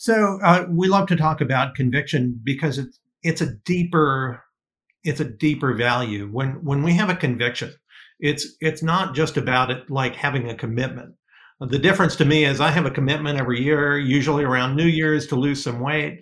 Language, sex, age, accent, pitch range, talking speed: English, male, 50-69, American, 130-170 Hz, 190 wpm